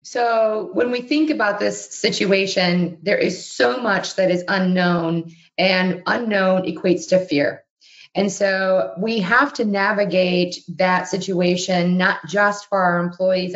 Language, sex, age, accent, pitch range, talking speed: English, female, 30-49, American, 180-200 Hz, 140 wpm